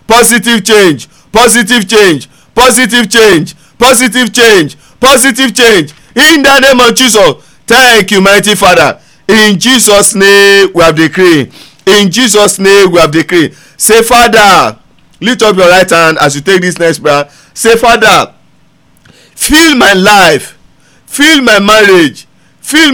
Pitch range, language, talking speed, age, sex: 195-245 Hz, English, 140 wpm, 50-69, male